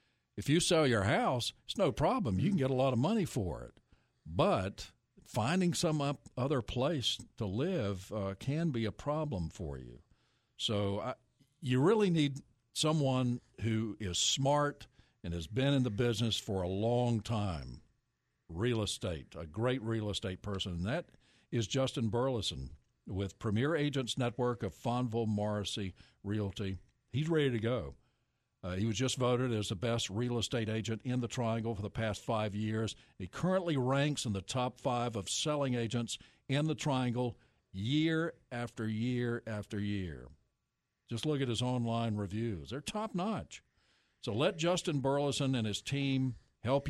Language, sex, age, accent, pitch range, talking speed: English, male, 60-79, American, 105-135 Hz, 160 wpm